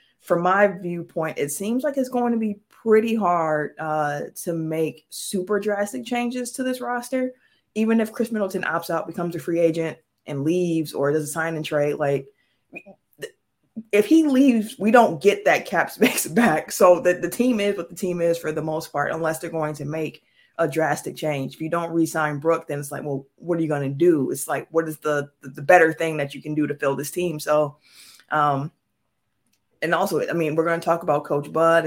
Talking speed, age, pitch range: 215 wpm, 20-39, 155-195 Hz